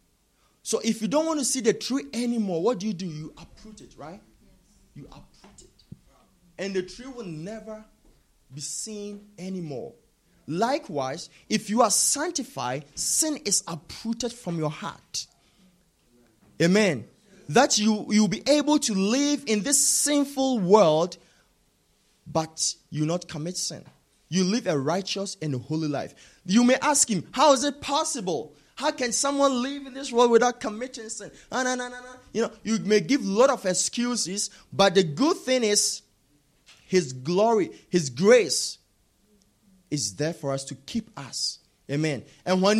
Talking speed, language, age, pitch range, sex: 160 wpm, English, 30-49, 175-250 Hz, male